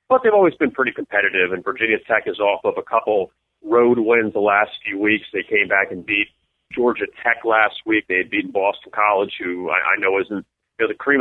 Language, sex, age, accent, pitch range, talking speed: English, male, 40-59, American, 115-140 Hz, 220 wpm